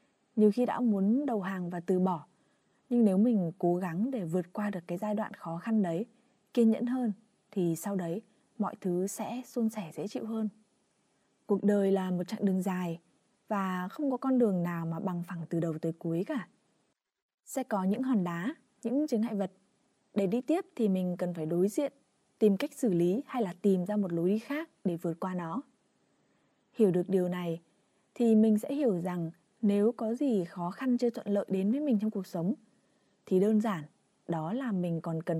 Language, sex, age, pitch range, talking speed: Vietnamese, female, 20-39, 180-230 Hz, 210 wpm